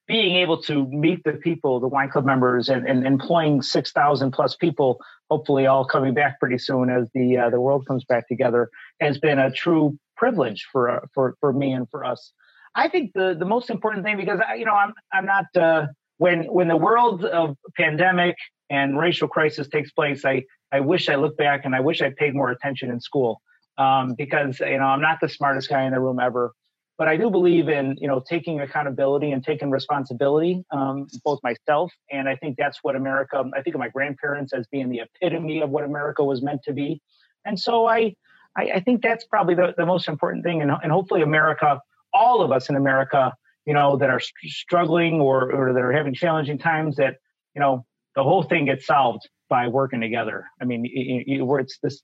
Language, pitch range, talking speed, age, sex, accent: English, 135-165 Hz, 210 wpm, 30-49, male, American